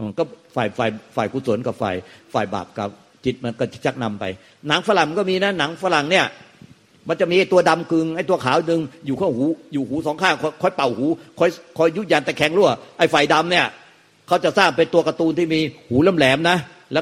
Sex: male